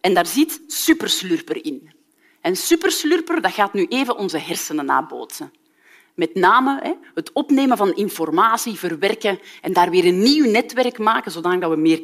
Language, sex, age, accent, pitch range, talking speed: Dutch, female, 40-59, Belgian, 210-345 Hz, 150 wpm